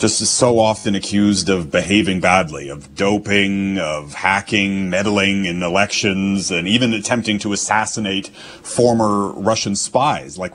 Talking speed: 130 wpm